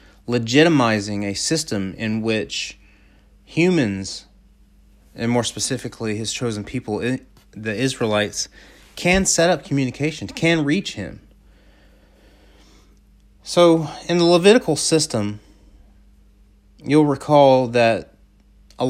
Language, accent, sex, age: English, American, male, 30-49